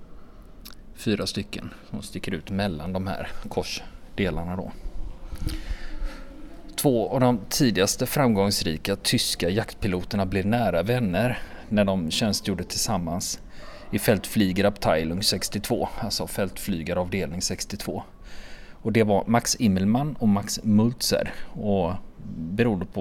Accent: native